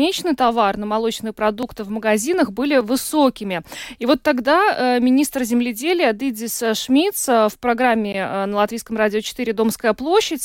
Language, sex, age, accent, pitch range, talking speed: Russian, female, 20-39, native, 220-275 Hz, 130 wpm